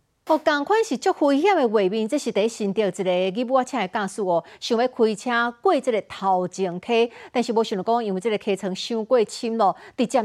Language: Chinese